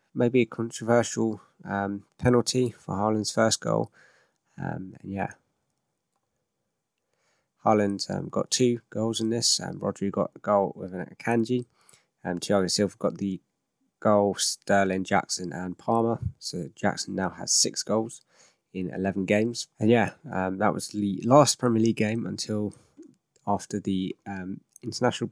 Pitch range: 100-120 Hz